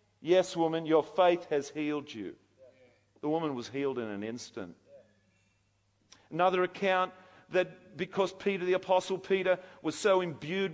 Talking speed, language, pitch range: 140 wpm, English, 145-185 Hz